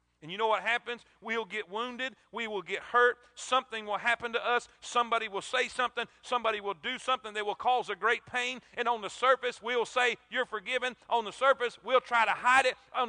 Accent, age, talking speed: American, 40-59, 220 wpm